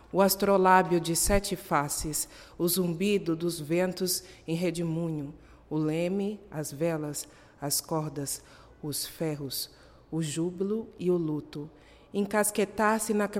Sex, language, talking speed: female, Portuguese, 110 wpm